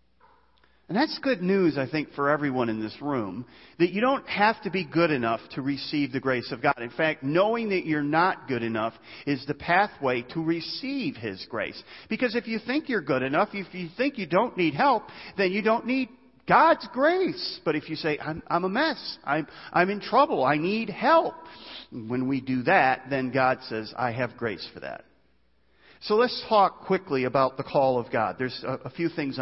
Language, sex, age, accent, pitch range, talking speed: English, male, 40-59, American, 130-200 Hz, 205 wpm